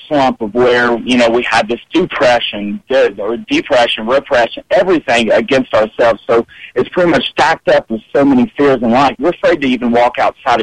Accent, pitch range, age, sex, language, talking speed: American, 120-180 Hz, 40-59, male, English, 185 wpm